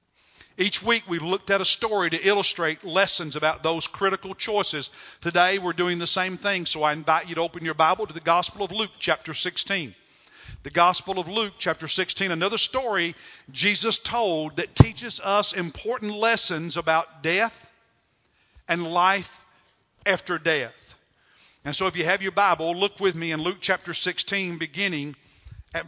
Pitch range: 160-190 Hz